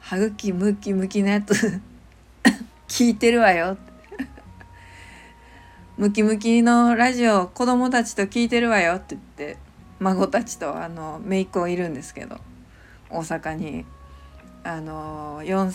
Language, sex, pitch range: Japanese, female, 160-225 Hz